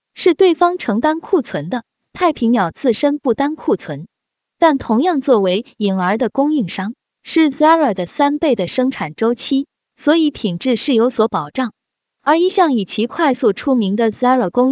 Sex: female